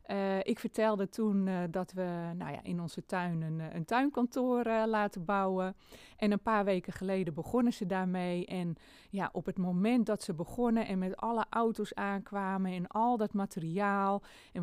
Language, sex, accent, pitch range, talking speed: Dutch, female, Dutch, 185-235 Hz, 170 wpm